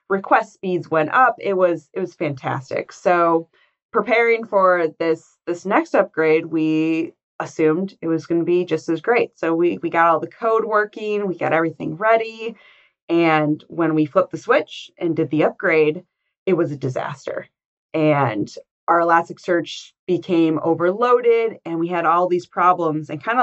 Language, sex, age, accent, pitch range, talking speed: English, female, 20-39, American, 160-195 Hz, 165 wpm